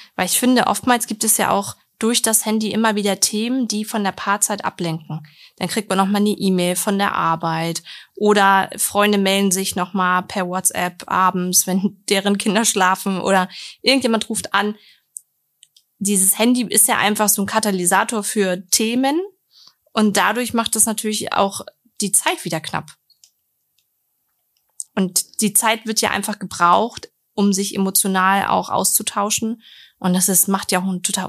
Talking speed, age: 160 wpm, 20-39